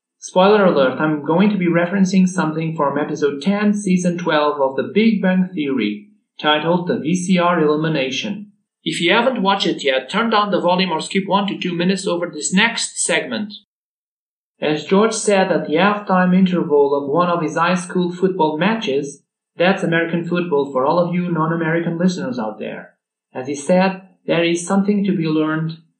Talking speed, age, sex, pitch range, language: 180 wpm, 40-59, male, 155-205 Hz, English